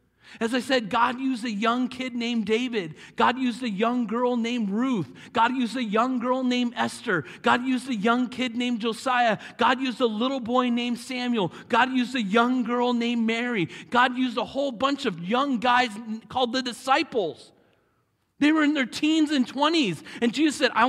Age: 40-59